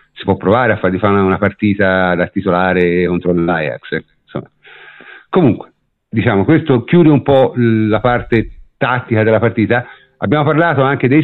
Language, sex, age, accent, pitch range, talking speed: Italian, male, 50-69, native, 95-125 Hz, 145 wpm